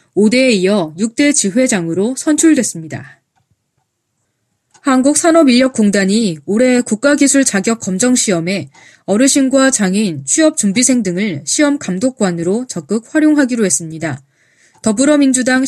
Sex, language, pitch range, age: female, Korean, 180-260 Hz, 20-39